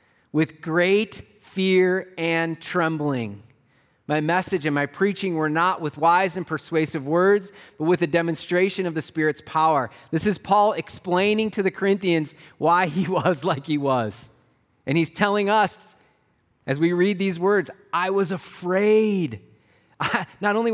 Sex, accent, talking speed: male, American, 155 wpm